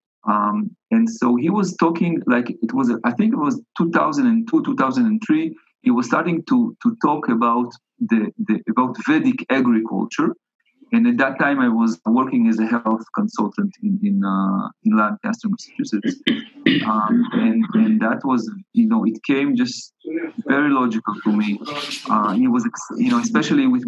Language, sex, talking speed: English, male, 165 wpm